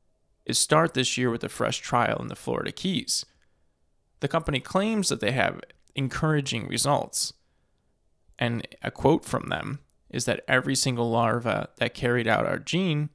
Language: English